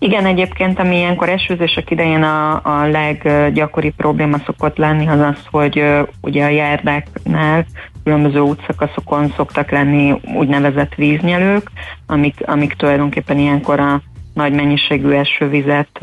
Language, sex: Hungarian, female